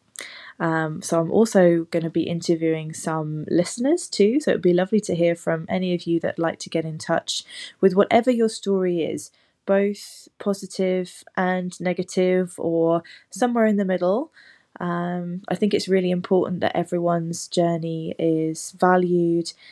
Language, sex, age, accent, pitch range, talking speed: English, female, 20-39, British, 165-185 Hz, 160 wpm